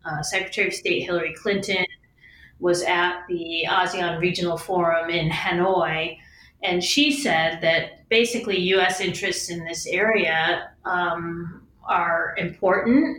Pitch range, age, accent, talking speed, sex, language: 165-195 Hz, 30-49, American, 125 wpm, female, English